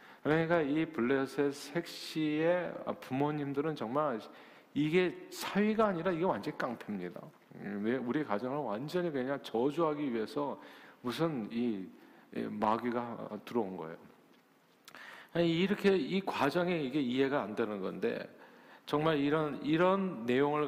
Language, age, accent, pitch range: Korean, 40-59, native, 110-155 Hz